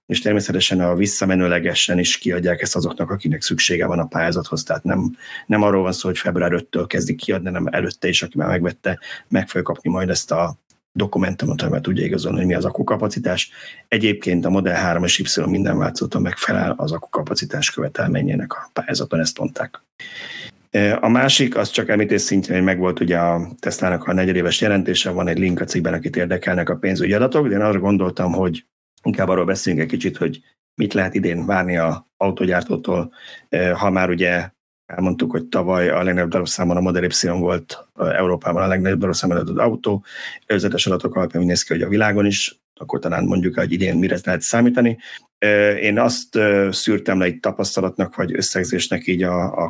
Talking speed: 175 wpm